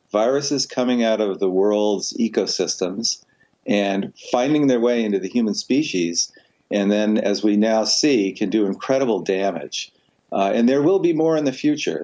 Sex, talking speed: male, 170 wpm